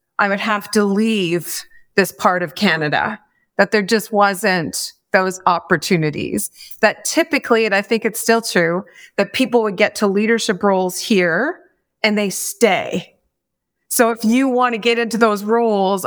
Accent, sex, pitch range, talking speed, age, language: American, female, 180-230 Hz, 160 wpm, 30-49, English